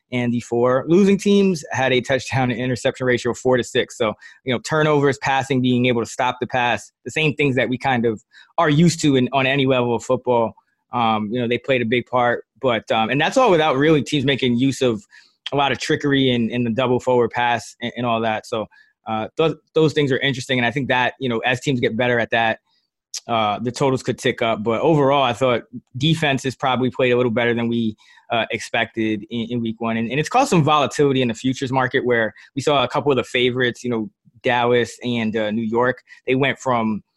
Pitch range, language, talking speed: 115-135 Hz, English, 235 wpm